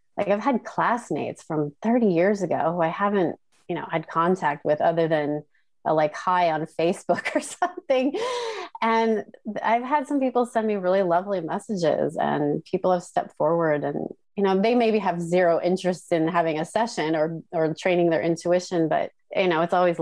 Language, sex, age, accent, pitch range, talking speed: English, female, 30-49, American, 170-225 Hz, 185 wpm